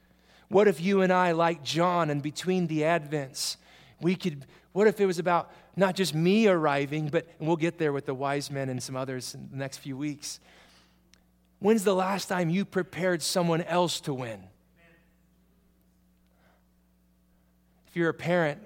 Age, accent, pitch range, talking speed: 30-49, American, 130-180 Hz, 170 wpm